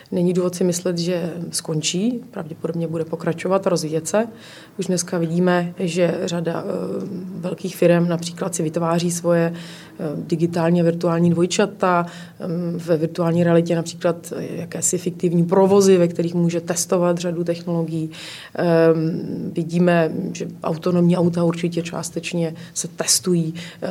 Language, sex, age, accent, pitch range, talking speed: Czech, female, 30-49, native, 170-185 Hz, 120 wpm